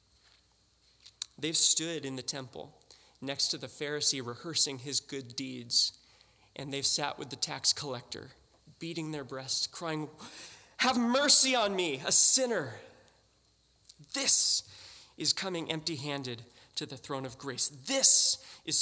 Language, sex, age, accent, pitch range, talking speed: English, male, 20-39, American, 130-175 Hz, 130 wpm